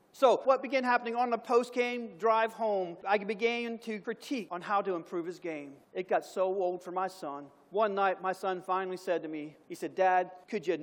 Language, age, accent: English, 40-59, American